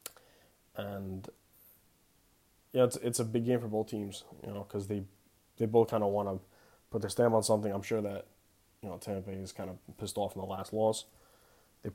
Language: English